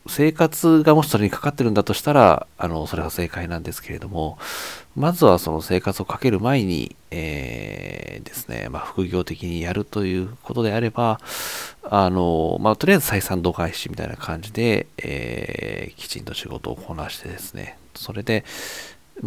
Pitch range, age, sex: 85-120 Hz, 40-59, male